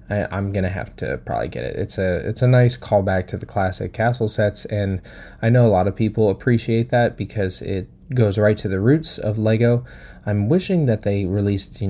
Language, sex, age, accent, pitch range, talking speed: English, male, 20-39, American, 95-115 Hz, 210 wpm